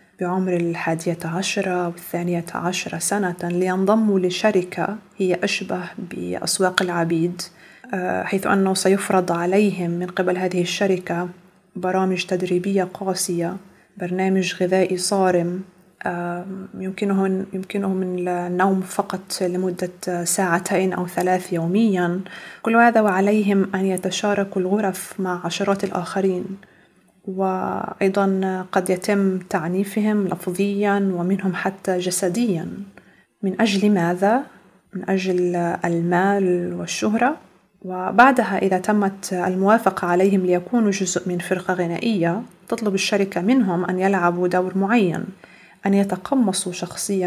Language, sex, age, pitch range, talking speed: Arabic, female, 30-49, 180-200 Hz, 100 wpm